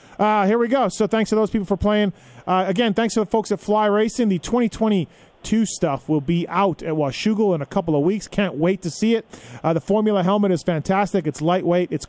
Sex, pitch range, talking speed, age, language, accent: male, 170-210 Hz, 235 wpm, 30-49, English, American